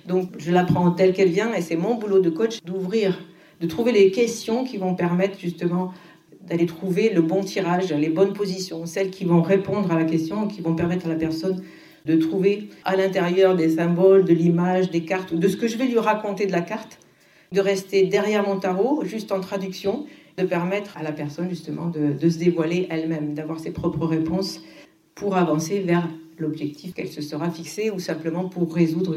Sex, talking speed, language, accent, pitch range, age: female, 200 wpm, French, French, 165-190 Hz, 50-69